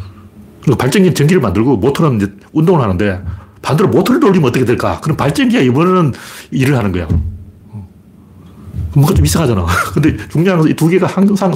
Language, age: Korean, 40-59